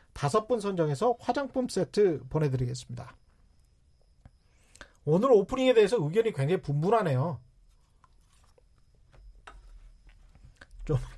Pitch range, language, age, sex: 140-195 Hz, Korean, 40-59, male